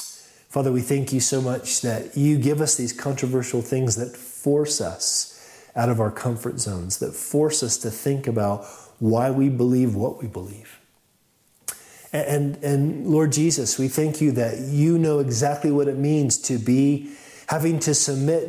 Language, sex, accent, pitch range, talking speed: English, male, American, 115-145 Hz, 170 wpm